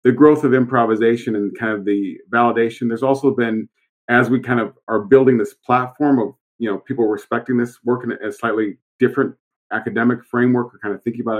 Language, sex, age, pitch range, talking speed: English, male, 40-59, 105-125 Hz, 200 wpm